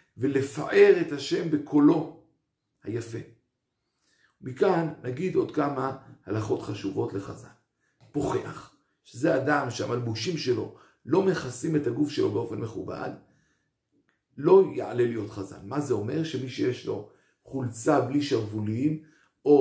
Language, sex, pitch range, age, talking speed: Hebrew, male, 120-160 Hz, 50-69, 115 wpm